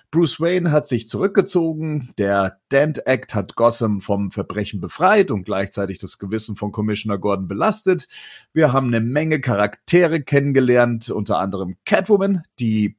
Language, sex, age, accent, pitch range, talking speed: German, male, 40-59, German, 110-165 Hz, 145 wpm